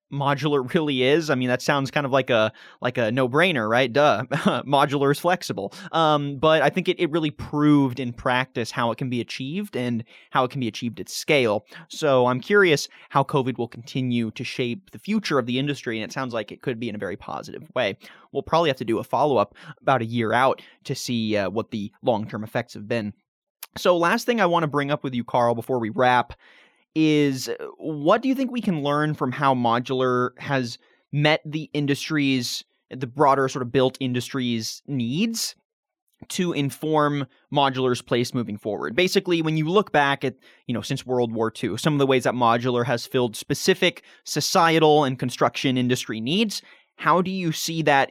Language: English